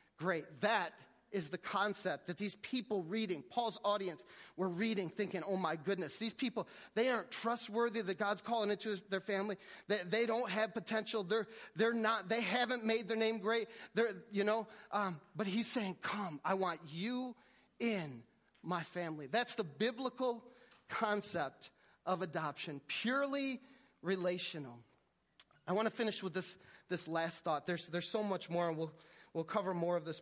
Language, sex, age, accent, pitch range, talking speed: English, male, 30-49, American, 170-220 Hz, 190 wpm